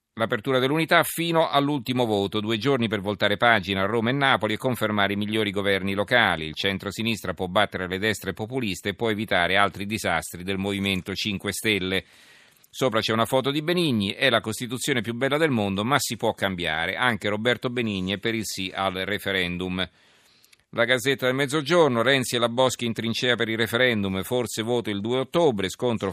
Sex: male